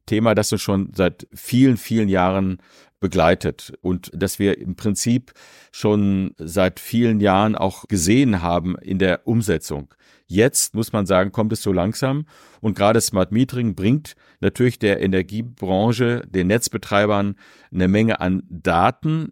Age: 50-69